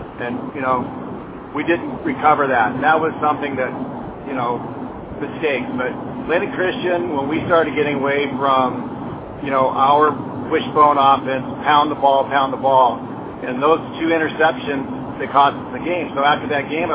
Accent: American